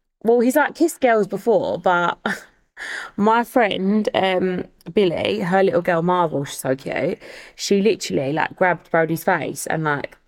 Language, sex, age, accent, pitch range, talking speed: English, female, 20-39, British, 165-200 Hz, 150 wpm